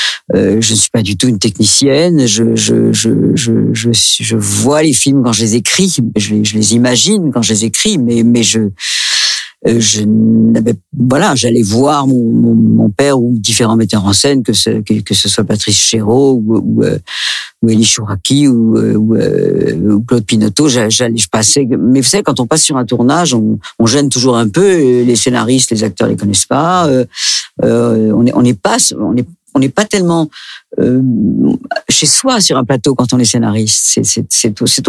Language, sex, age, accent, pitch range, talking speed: French, female, 50-69, French, 115-155 Hz, 215 wpm